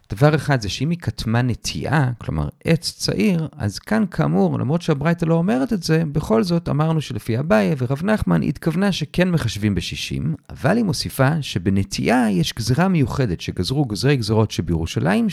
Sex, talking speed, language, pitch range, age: male, 160 wpm, Hebrew, 115-185 Hz, 50-69